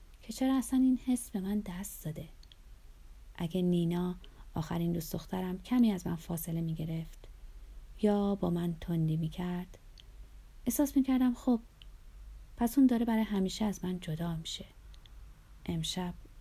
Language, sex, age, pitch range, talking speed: Persian, female, 30-49, 165-210 Hz, 145 wpm